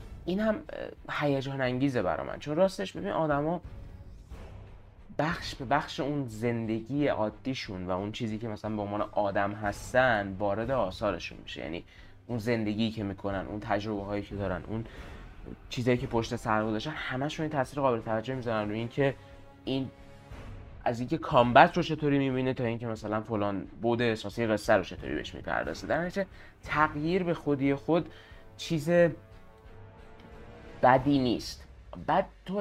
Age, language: 20-39, Persian